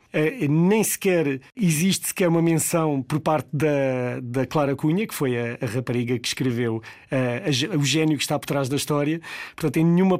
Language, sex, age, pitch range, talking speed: Portuguese, male, 40-59, 140-165 Hz, 195 wpm